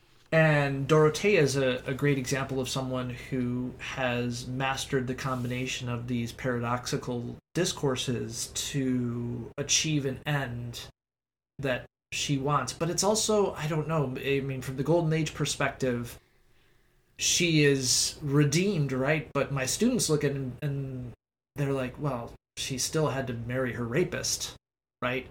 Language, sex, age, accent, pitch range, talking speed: English, male, 20-39, American, 125-155 Hz, 140 wpm